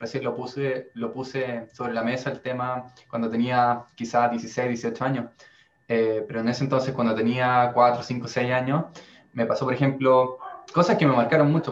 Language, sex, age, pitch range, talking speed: Spanish, male, 20-39, 120-140 Hz, 185 wpm